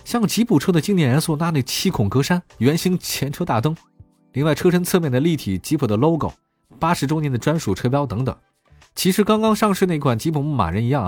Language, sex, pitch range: Chinese, male, 105-150 Hz